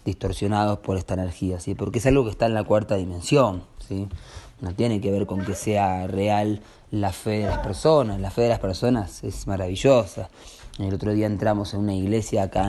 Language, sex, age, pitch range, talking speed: Spanish, male, 20-39, 90-110 Hz, 205 wpm